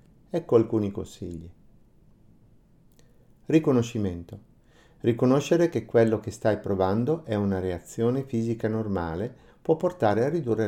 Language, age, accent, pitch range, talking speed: Italian, 50-69, native, 95-125 Hz, 105 wpm